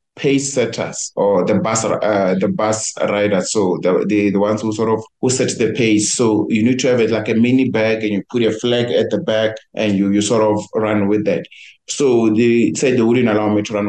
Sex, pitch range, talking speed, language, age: male, 105-120 Hz, 240 wpm, English, 30-49